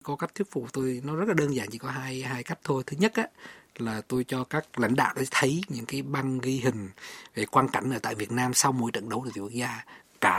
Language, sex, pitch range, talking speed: Vietnamese, male, 120-155 Hz, 275 wpm